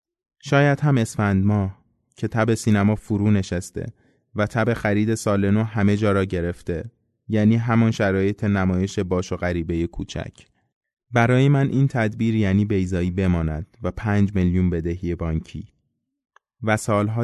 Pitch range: 95-115 Hz